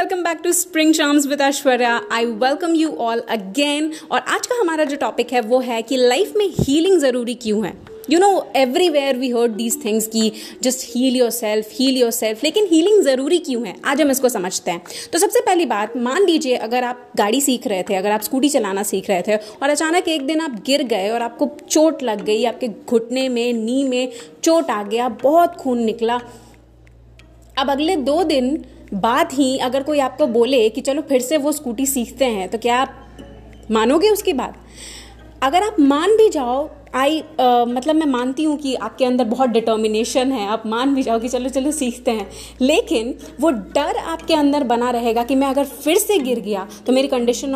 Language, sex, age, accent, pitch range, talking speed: Hindi, female, 30-49, native, 235-300 Hz, 185 wpm